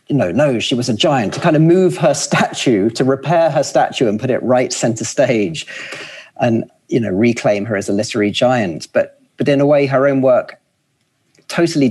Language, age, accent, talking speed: English, 40-59, British, 205 wpm